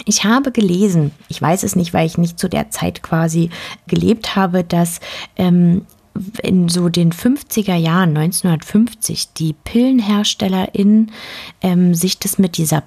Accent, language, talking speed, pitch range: German, German, 135 wpm, 165-235 Hz